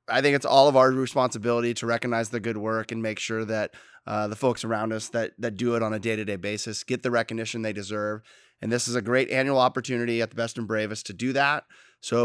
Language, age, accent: English, 20-39, American